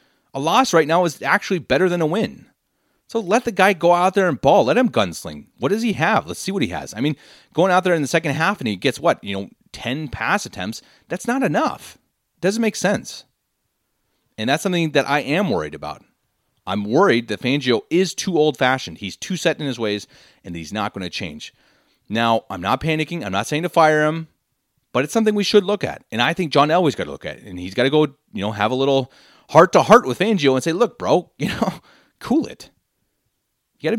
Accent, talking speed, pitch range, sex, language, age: American, 240 wpm, 130-195 Hz, male, English, 30-49